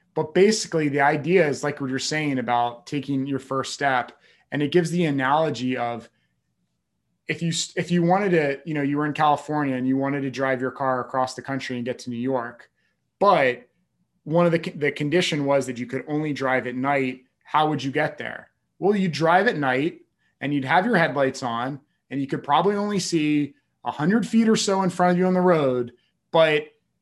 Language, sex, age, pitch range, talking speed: English, male, 30-49, 130-160 Hz, 215 wpm